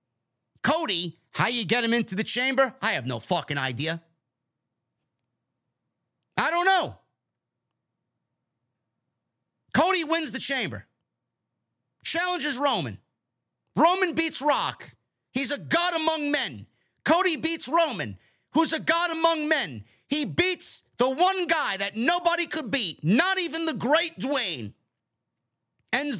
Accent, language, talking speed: American, English, 120 wpm